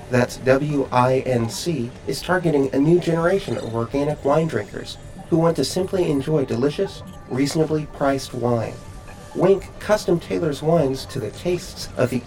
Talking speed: 135 wpm